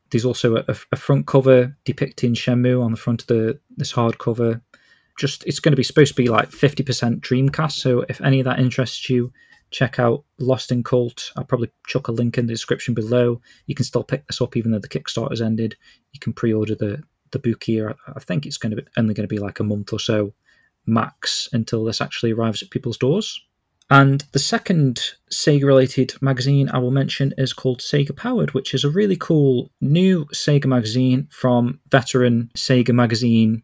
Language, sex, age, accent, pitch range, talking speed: English, male, 20-39, British, 115-135 Hz, 200 wpm